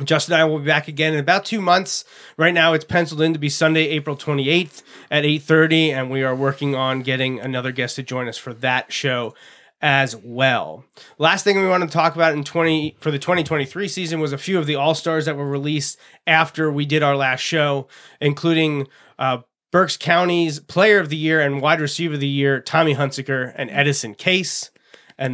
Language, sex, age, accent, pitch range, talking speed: English, male, 30-49, American, 135-160 Hz, 205 wpm